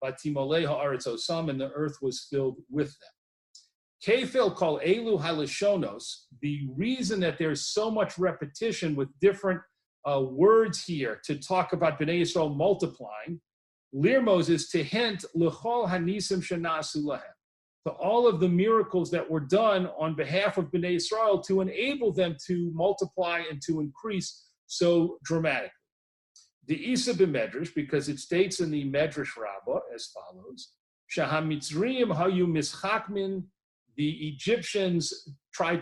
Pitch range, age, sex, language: 150-190 Hz, 40-59, male, English